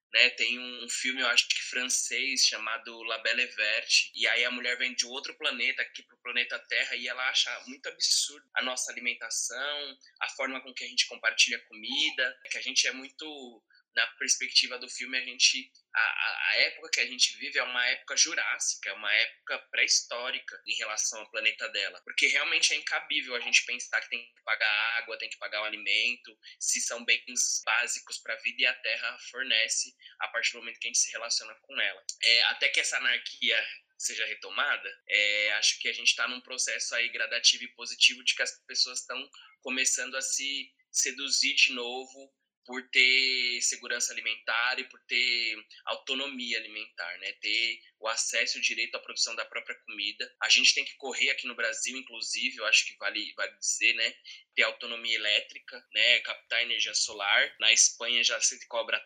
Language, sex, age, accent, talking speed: Portuguese, male, 20-39, Brazilian, 195 wpm